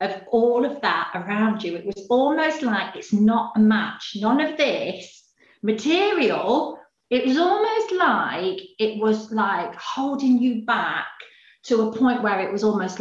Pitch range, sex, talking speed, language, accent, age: 190-240 Hz, female, 160 wpm, English, British, 40-59